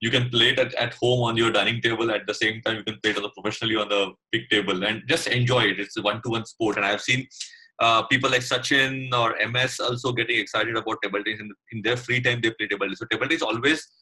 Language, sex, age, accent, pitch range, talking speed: English, male, 30-49, Indian, 110-125 Hz, 270 wpm